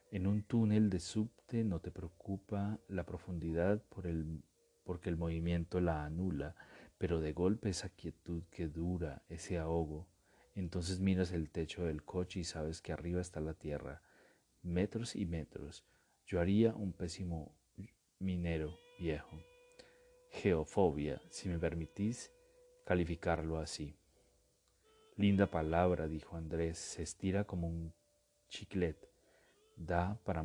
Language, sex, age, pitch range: Spanish, male, 40-59, 80-100 Hz